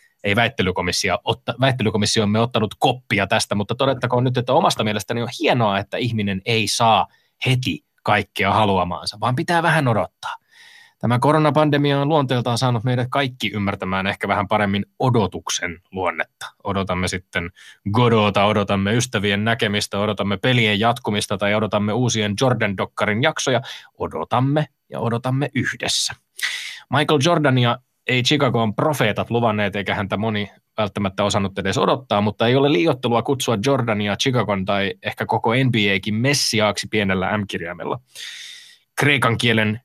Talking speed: 130 wpm